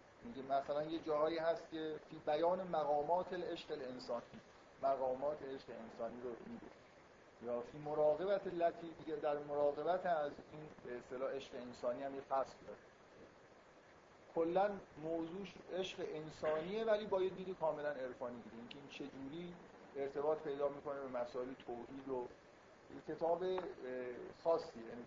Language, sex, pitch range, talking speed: Persian, male, 130-160 Hz, 135 wpm